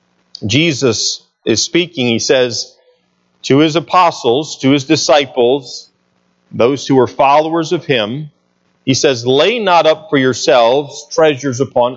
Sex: male